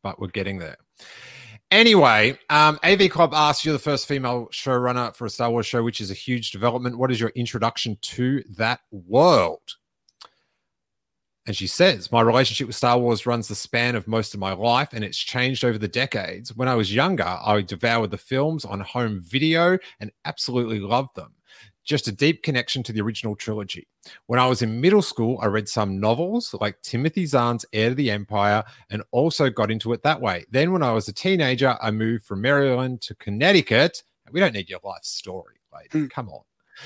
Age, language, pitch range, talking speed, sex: 30-49, English, 110-140 Hz, 195 wpm, male